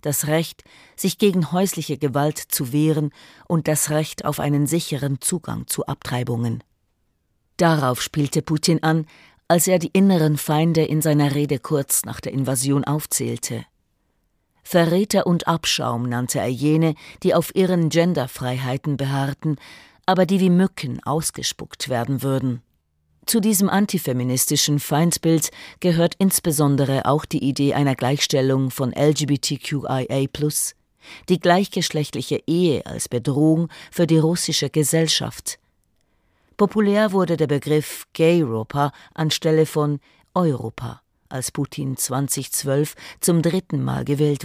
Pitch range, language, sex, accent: 135-165 Hz, German, female, German